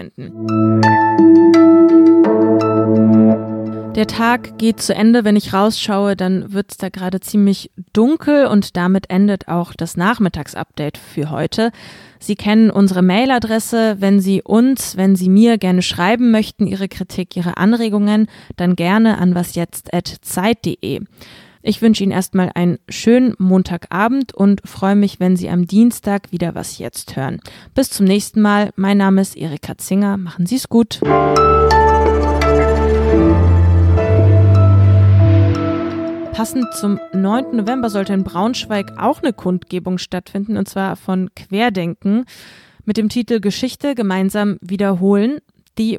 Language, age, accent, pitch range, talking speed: German, 20-39, German, 175-220 Hz, 125 wpm